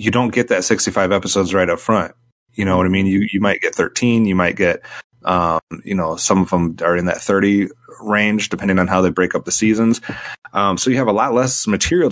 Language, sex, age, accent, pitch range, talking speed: English, male, 30-49, American, 90-110 Hz, 245 wpm